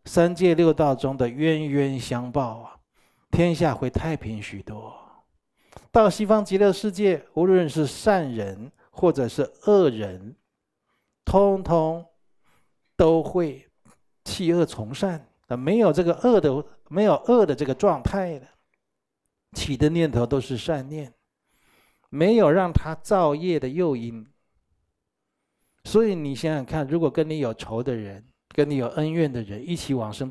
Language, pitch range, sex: Chinese, 120-165 Hz, male